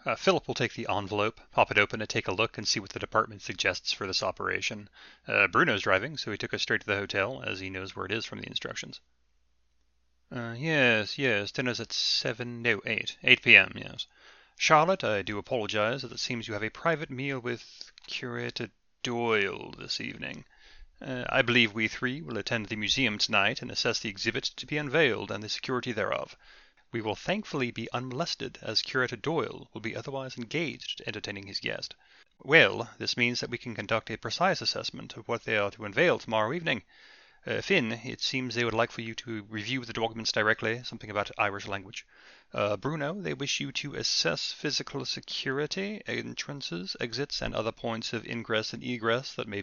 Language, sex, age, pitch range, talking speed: English, male, 30-49, 105-125 Hz, 195 wpm